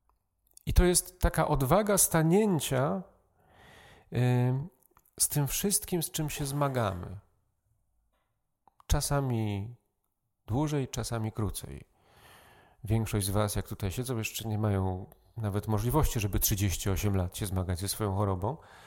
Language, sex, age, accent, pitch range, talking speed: Polish, male, 40-59, native, 100-150 Hz, 115 wpm